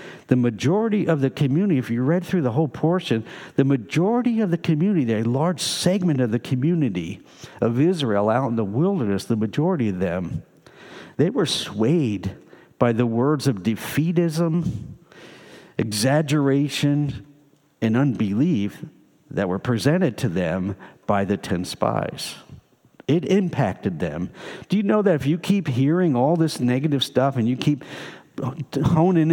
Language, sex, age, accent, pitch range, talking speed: English, male, 60-79, American, 120-165 Hz, 145 wpm